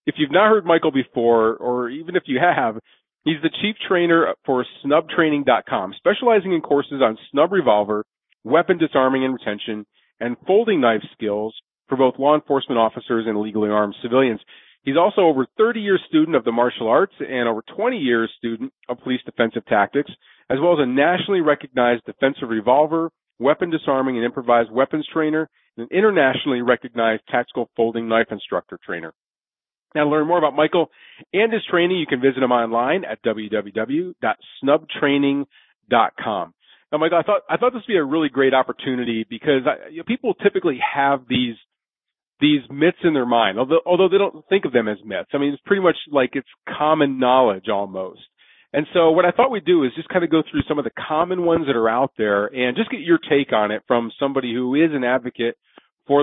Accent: American